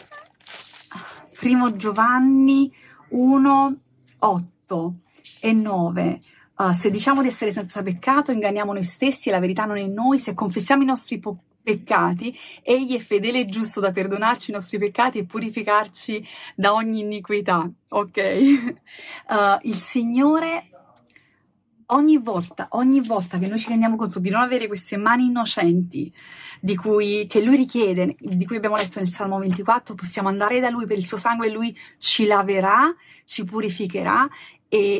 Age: 30-49